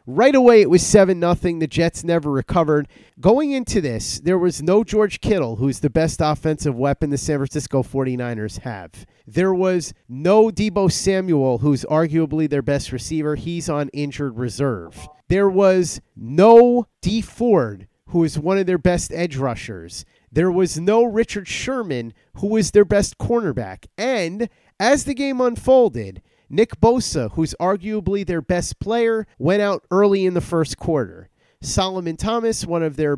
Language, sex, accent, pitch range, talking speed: English, male, American, 145-200 Hz, 160 wpm